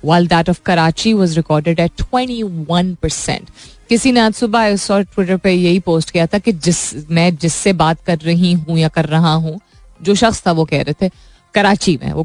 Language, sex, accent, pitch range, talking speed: Hindi, female, native, 155-195 Hz, 70 wpm